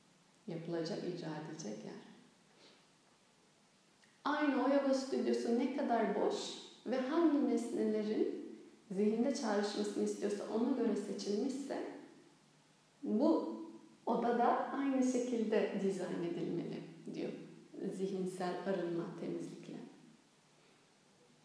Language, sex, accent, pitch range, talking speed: Turkish, female, native, 190-250 Hz, 85 wpm